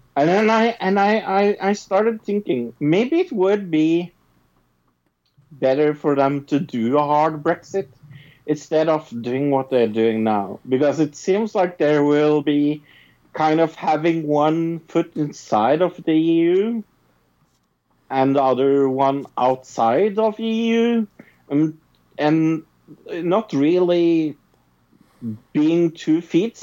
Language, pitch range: English, 135-190 Hz